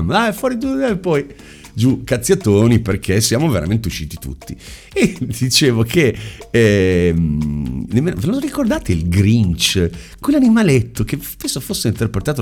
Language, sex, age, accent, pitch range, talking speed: Italian, male, 50-69, native, 90-150 Hz, 120 wpm